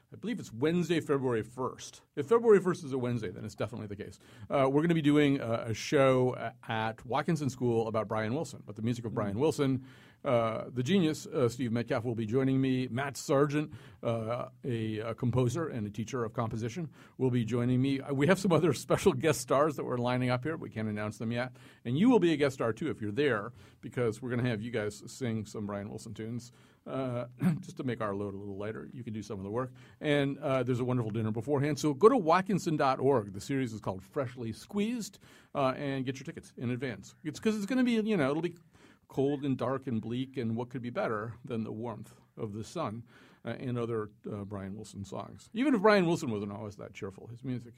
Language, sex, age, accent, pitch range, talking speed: English, male, 50-69, American, 115-145 Hz, 235 wpm